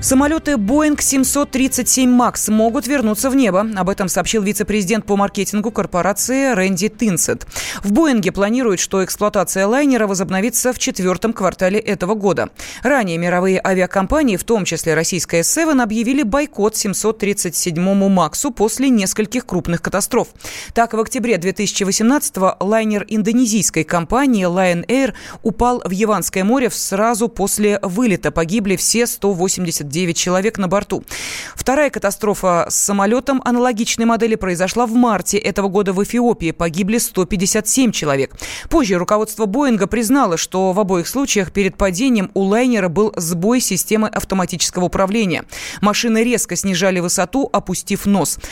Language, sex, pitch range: Russian, female, 185-235 Hz